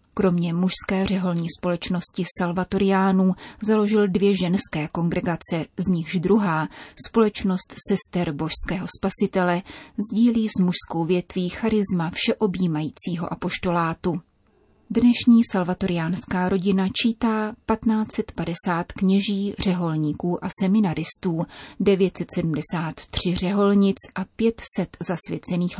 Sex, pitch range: female, 175-205 Hz